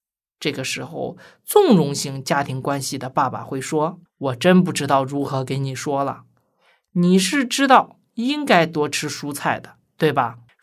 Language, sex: Chinese, male